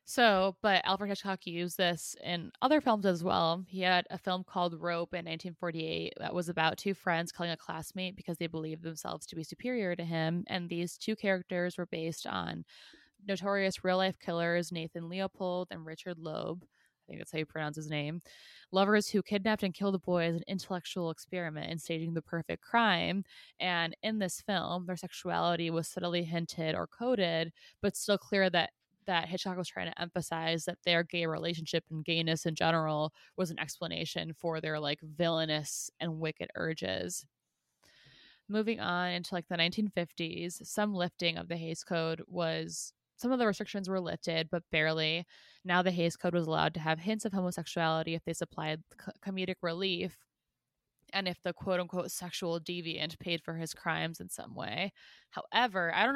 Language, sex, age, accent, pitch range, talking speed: English, female, 20-39, American, 165-185 Hz, 180 wpm